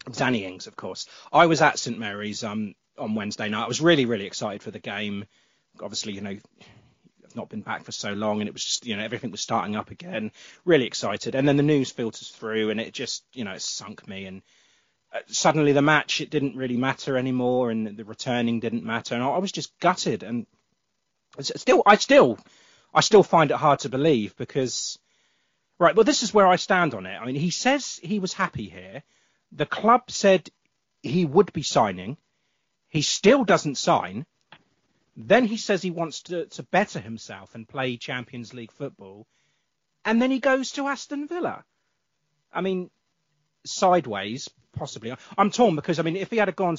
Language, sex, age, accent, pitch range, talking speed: English, male, 30-49, British, 115-175 Hz, 195 wpm